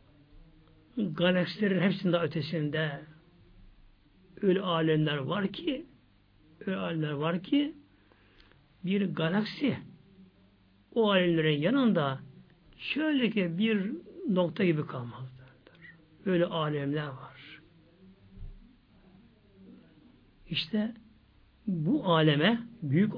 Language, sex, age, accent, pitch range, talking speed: Turkish, male, 60-79, native, 135-205 Hz, 75 wpm